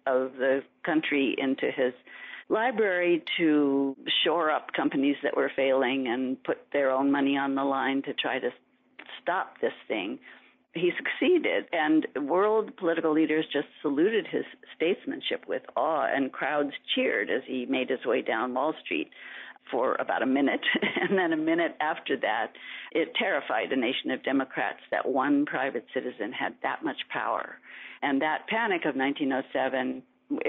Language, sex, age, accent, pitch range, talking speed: English, female, 50-69, American, 140-210 Hz, 155 wpm